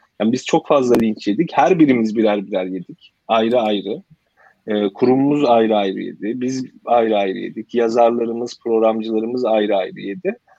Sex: male